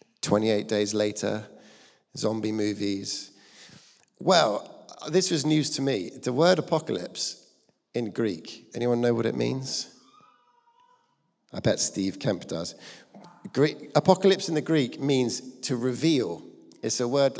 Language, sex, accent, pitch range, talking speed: English, male, British, 115-140 Hz, 125 wpm